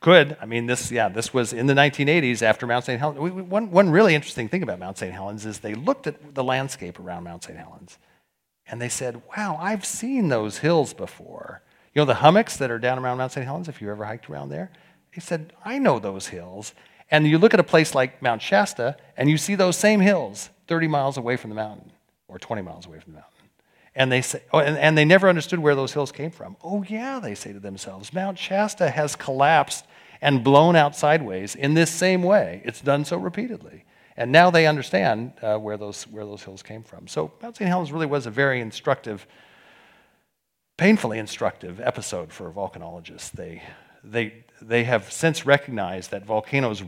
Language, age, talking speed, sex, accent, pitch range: English, 40-59, 210 wpm, male, American, 110-165 Hz